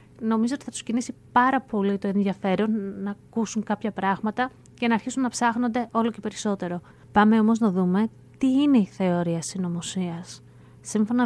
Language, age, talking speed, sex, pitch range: Greek, 20-39, 165 wpm, female, 185-240 Hz